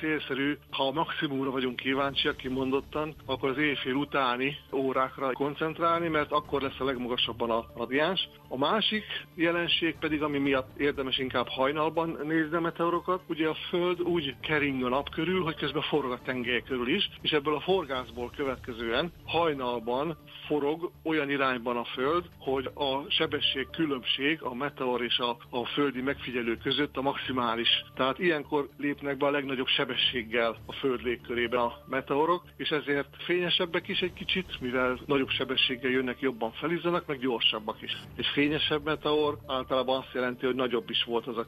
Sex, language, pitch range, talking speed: male, Hungarian, 125-150 Hz, 160 wpm